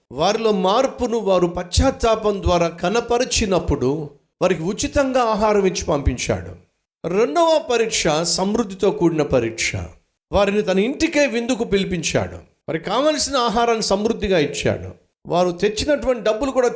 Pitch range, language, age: 170-235 Hz, Telugu, 50-69